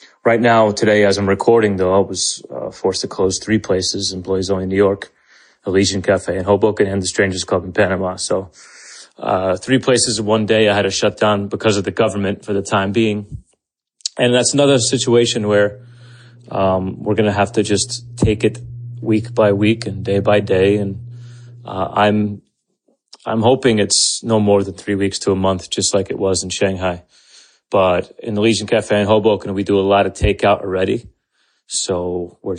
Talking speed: 195 wpm